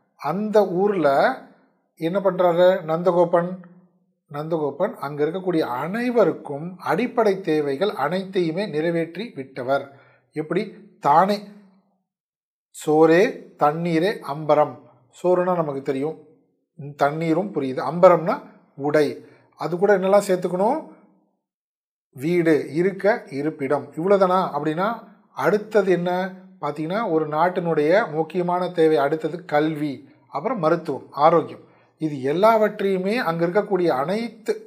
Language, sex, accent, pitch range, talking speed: Tamil, male, native, 150-195 Hz, 85 wpm